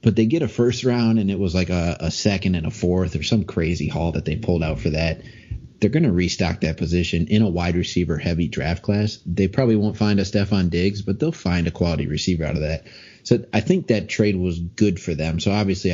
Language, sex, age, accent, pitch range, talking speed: English, male, 30-49, American, 85-105 Hz, 250 wpm